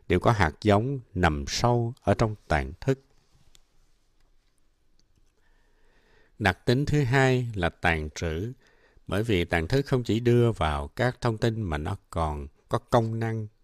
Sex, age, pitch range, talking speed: male, 60-79, 80-120 Hz, 150 wpm